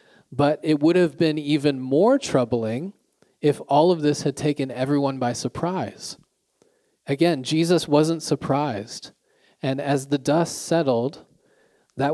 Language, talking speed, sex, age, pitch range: English, 135 wpm, male, 30-49, 125-155 Hz